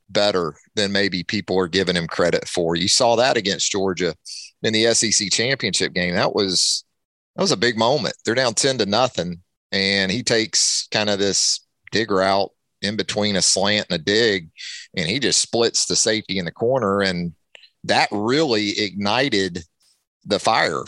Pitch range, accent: 95-115 Hz, American